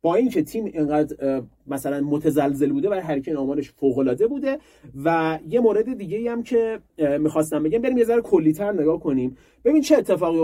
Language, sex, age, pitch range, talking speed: Persian, male, 30-49, 145-205 Hz, 165 wpm